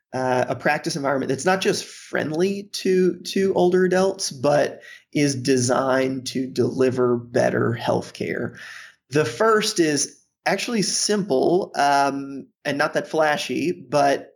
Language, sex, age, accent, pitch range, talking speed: English, male, 30-49, American, 130-165 Hz, 125 wpm